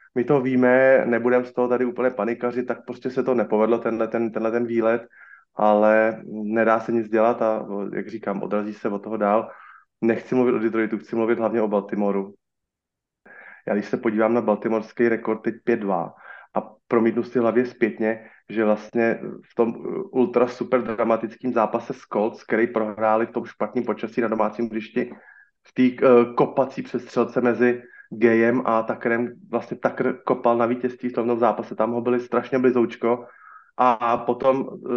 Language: Slovak